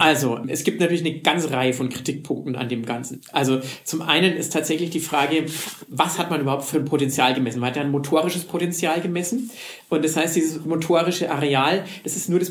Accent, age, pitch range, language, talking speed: German, 40-59, 135-175 Hz, German, 210 wpm